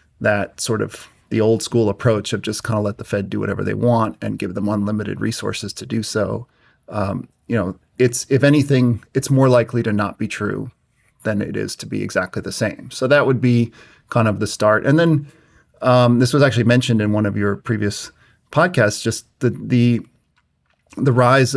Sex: male